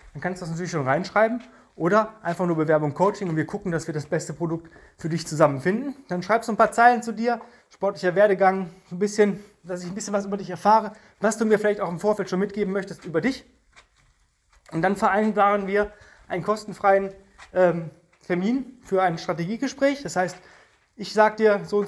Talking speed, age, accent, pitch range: 195 wpm, 20-39, German, 170-220 Hz